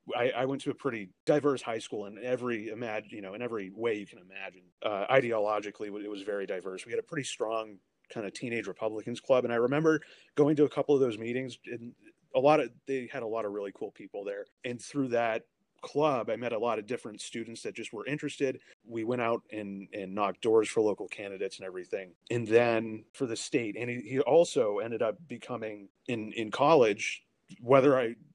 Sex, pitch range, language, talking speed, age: male, 110-140 Hz, English, 220 wpm, 30-49